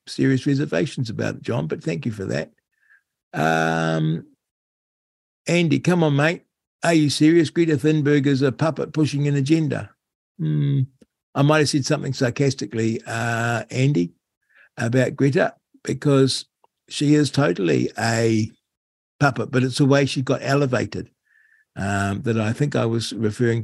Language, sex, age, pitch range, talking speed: English, male, 60-79, 115-145 Hz, 145 wpm